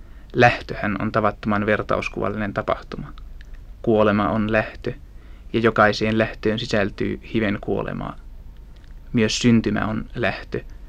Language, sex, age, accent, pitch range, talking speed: Finnish, male, 20-39, native, 100-110 Hz, 100 wpm